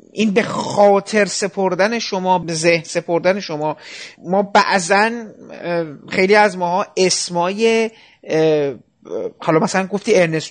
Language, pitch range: Persian, 185-240 Hz